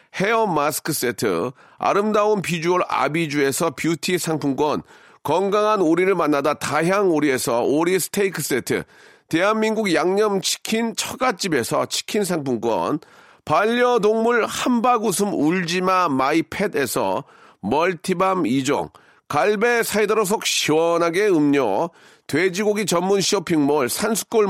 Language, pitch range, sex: Korean, 170-220 Hz, male